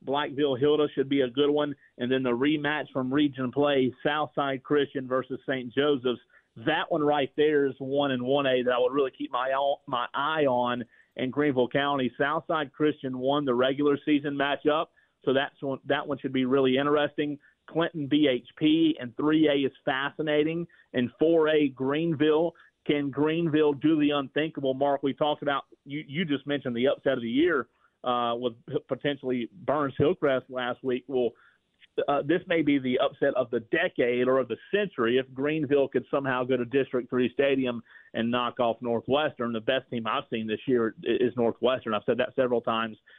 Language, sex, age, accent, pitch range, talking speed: English, male, 40-59, American, 125-150 Hz, 175 wpm